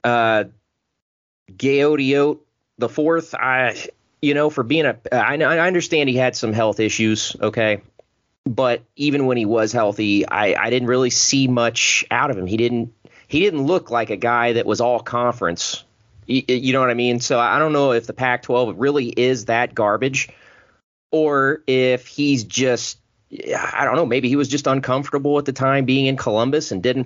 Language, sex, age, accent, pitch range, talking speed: English, male, 30-49, American, 115-135 Hz, 190 wpm